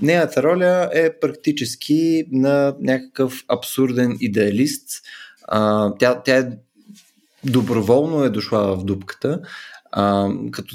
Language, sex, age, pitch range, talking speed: Bulgarian, male, 20-39, 110-150 Hz, 90 wpm